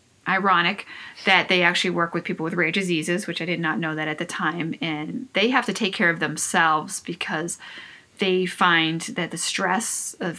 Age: 30-49